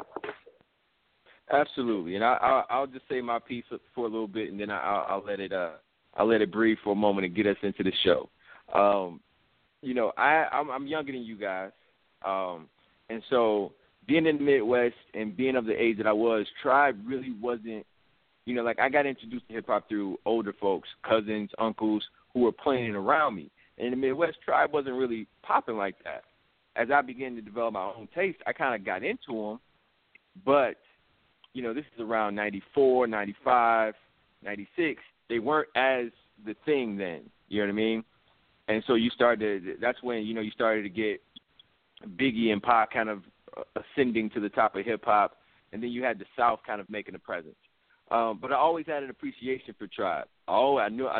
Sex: male